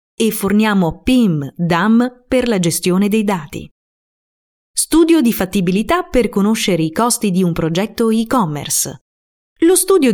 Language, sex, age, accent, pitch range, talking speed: Italian, female, 30-49, native, 175-255 Hz, 130 wpm